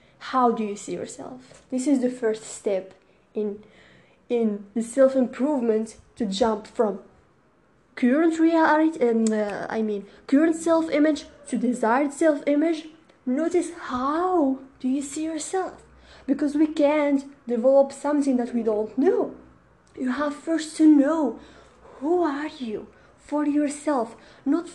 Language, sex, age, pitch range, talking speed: English, female, 20-39, 240-310 Hz, 135 wpm